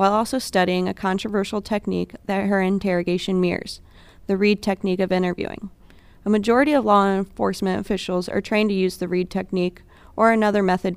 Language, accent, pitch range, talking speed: English, American, 185-215 Hz, 170 wpm